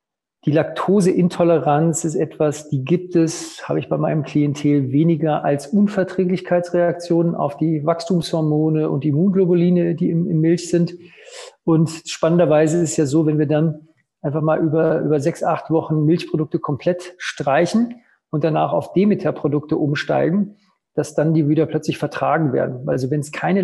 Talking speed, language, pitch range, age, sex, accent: 150 wpm, German, 150-175 Hz, 40-59, male, German